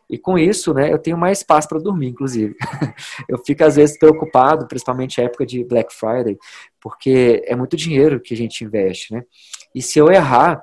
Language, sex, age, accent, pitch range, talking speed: Portuguese, male, 20-39, Brazilian, 125-160 Hz, 200 wpm